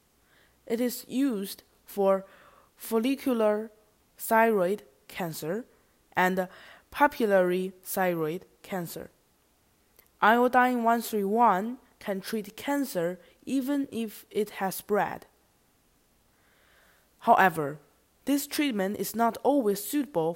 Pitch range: 180-240 Hz